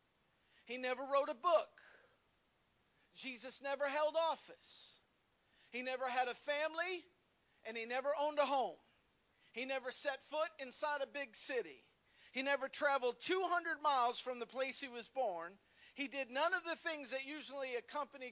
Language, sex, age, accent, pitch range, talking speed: English, male, 50-69, American, 250-330 Hz, 155 wpm